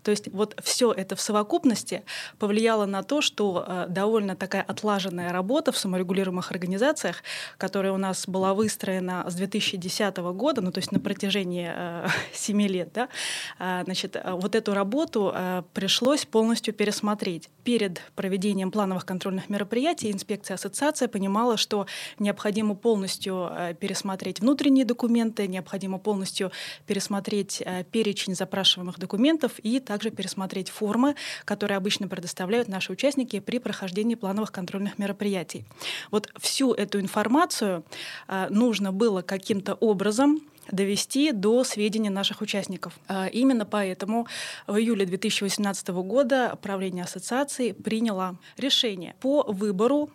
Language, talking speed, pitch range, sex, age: Russian, 120 wpm, 190-225 Hz, female, 20-39